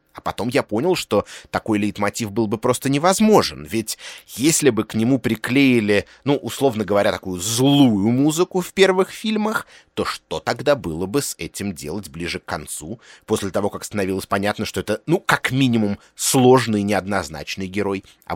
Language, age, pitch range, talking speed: Russian, 30-49, 95-140 Hz, 165 wpm